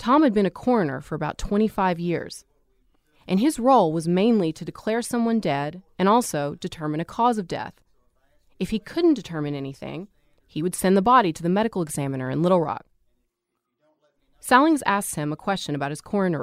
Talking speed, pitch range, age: 185 wpm, 155-215 Hz, 20-39